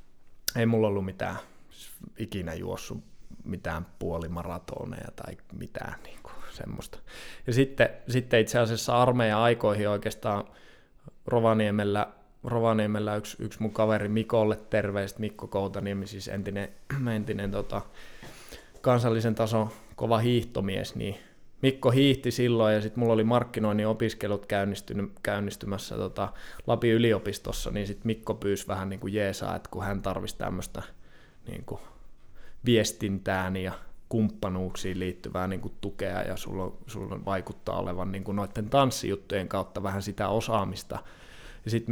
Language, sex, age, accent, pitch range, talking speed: Finnish, male, 20-39, native, 100-115 Hz, 125 wpm